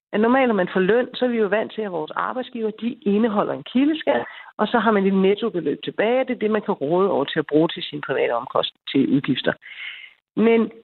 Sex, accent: female, native